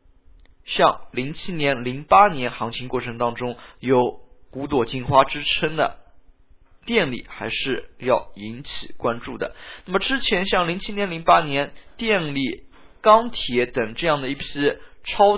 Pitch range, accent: 115-175 Hz, native